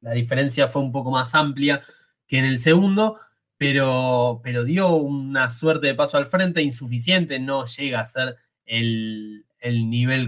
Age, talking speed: 20-39, 165 wpm